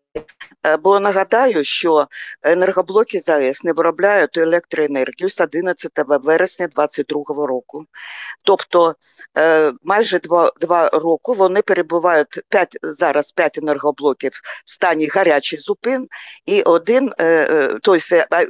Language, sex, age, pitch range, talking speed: Ukrainian, female, 50-69, 155-205 Hz, 95 wpm